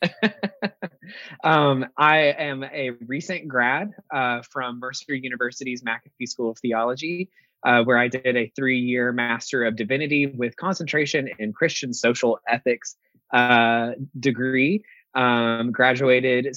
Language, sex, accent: English, male, American